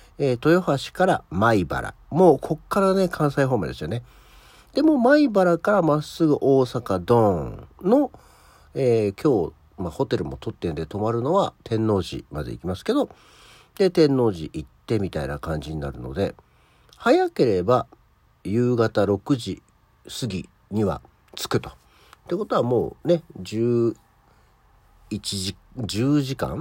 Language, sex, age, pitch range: Japanese, male, 50-69, 95-140 Hz